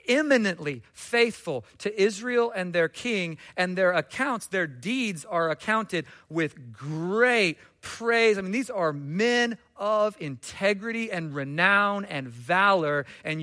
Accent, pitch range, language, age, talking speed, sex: American, 135-180 Hz, English, 40-59, 130 wpm, male